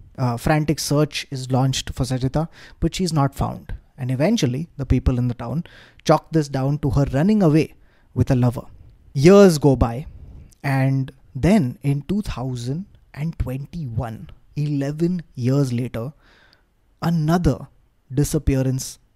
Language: English